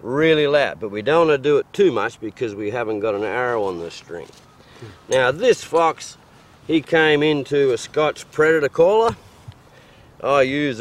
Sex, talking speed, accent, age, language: male, 180 wpm, Australian, 50-69, English